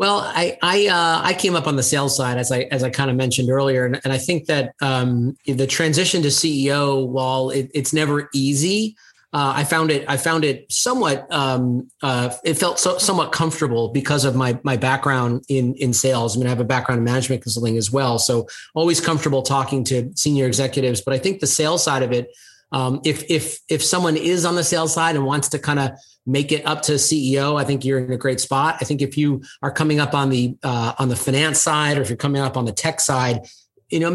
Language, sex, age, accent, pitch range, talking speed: English, male, 30-49, American, 130-155 Hz, 235 wpm